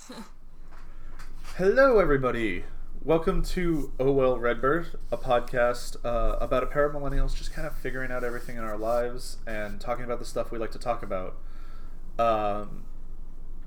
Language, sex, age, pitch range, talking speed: English, male, 30-49, 110-145 Hz, 155 wpm